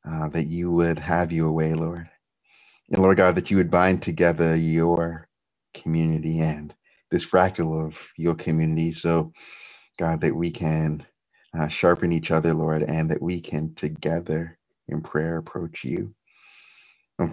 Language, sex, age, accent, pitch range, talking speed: English, male, 30-49, American, 80-90 Hz, 150 wpm